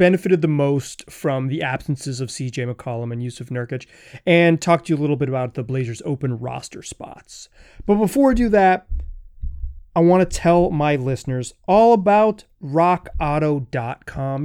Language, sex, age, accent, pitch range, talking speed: English, male, 30-49, American, 150-200 Hz, 160 wpm